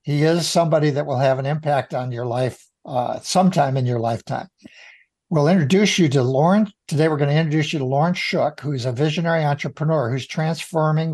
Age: 60-79